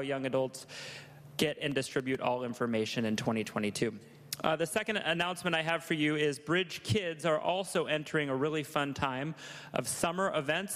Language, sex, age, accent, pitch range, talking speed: English, male, 30-49, American, 150-190 Hz, 165 wpm